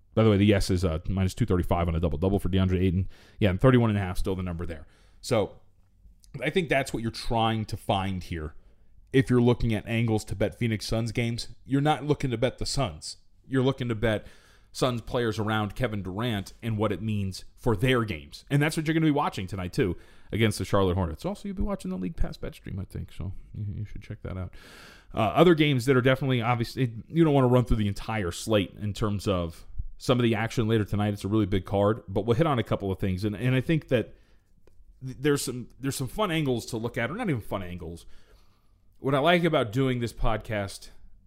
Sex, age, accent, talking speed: male, 30-49, American, 230 wpm